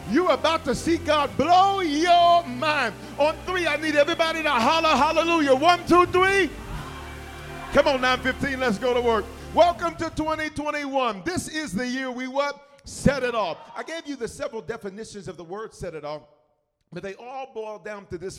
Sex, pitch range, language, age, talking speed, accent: male, 205-280 Hz, English, 40-59, 185 wpm, American